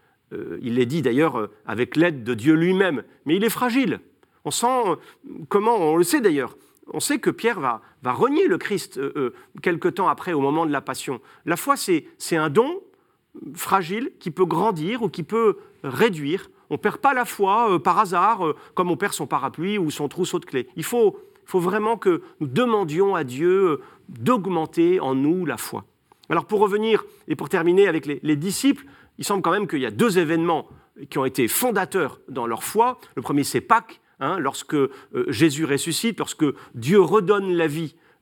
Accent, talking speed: French, 190 wpm